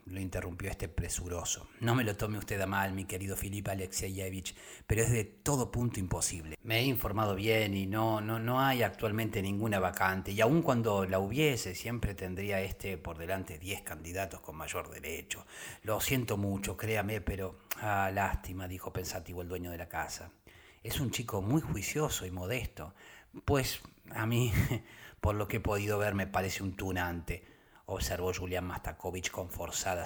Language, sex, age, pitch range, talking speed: Spanish, male, 40-59, 90-110 Hz, 175 wpm